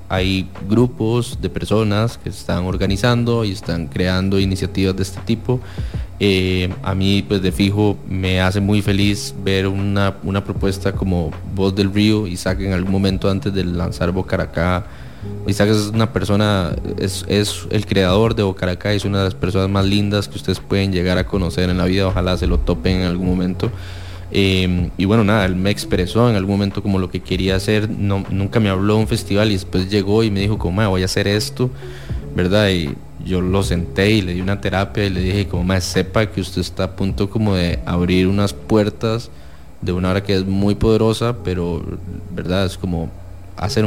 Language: English